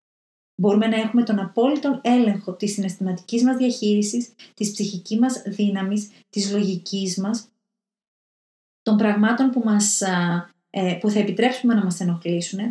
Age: 30-49